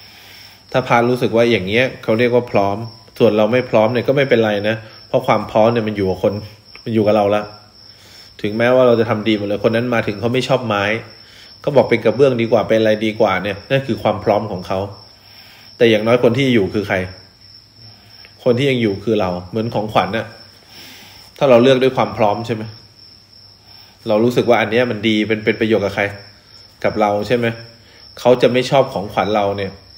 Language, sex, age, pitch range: English, male, 20-39, 100-120 Hz